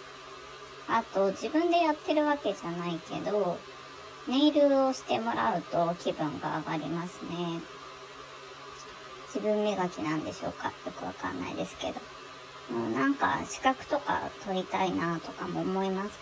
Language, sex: Japanese, male